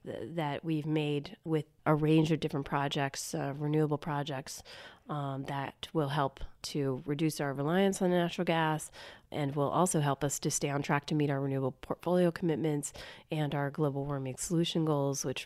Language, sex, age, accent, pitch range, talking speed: English, female, 30-49, American, 145-170 Hz, 175 wpm